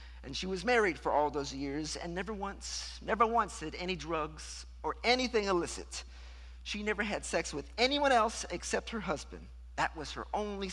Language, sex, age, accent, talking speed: English, male, 50-69, American, 185 wpm